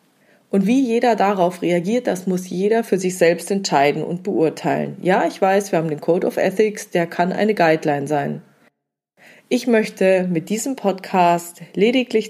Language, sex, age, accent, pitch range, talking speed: German, female, 40-59, German, 170-215 Hz, 165 wpm